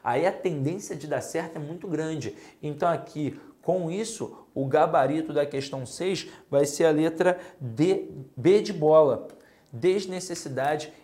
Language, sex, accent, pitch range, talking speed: Portuguese, male, Brazilian, 130-160 Hz, 140 wpm